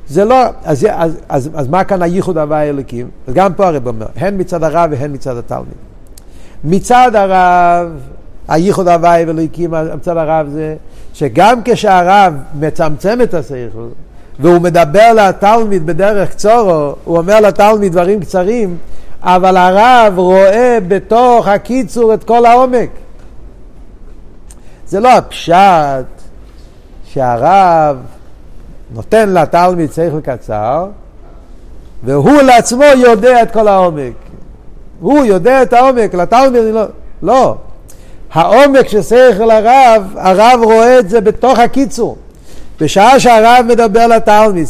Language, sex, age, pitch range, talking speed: Hebrew, male, 50-69, 160-220 Hz, 120 wpm